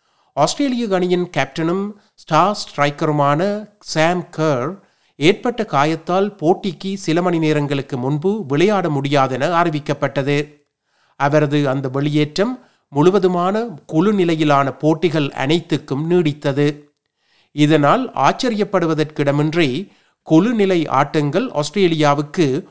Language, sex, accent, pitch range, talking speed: Tamil, male, native, 145-185 Hz, 70 wpm